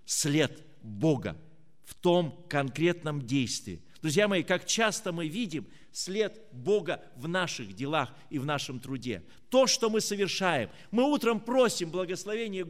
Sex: male